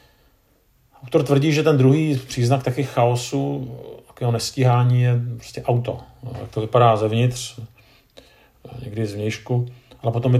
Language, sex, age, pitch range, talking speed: Czech, male, 50-69, 110-130 Hz, 125 wpm